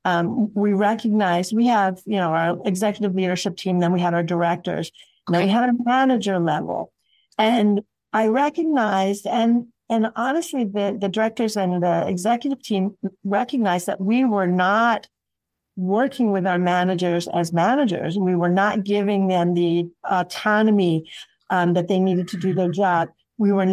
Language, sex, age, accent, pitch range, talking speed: English, female, 50-69, American, 175-210 Hz, 160 wpm